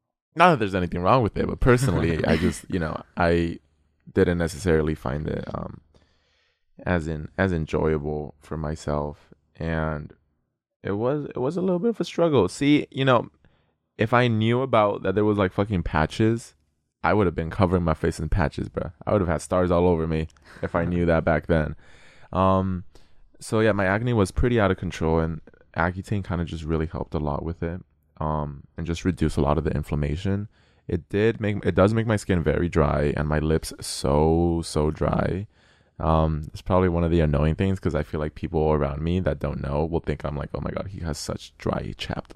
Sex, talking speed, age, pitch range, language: male, 210 wpm, 20-39, 80-100 Hz, English